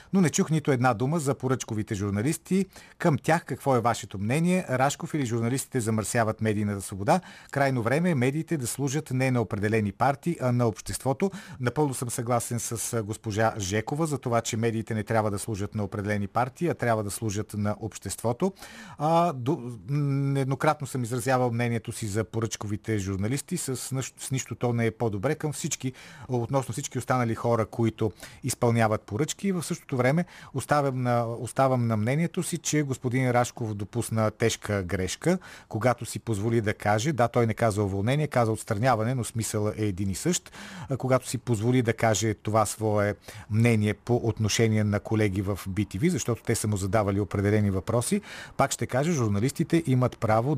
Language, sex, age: Bulgarian, male, 40-59